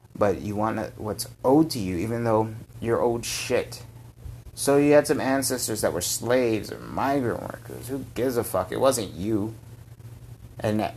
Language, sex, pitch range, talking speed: English, male, 110-120 Hz, 170 wpm